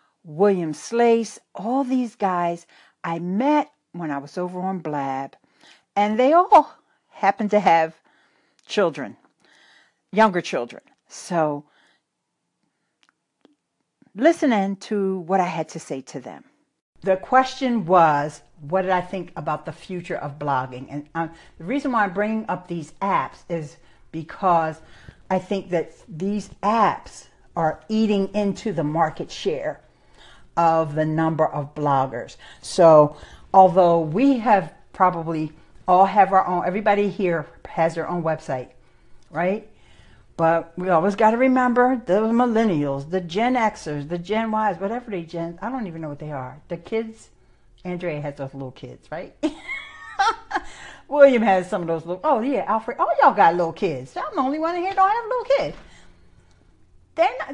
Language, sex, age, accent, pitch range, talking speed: English, female, 60-79, American, 160-220 Hz, 155 wpm